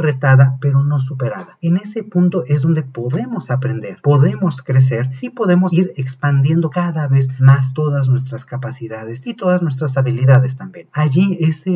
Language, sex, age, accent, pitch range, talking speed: Spanish, male, 40-59, Mexican, 130-170 Hz, 155 wpm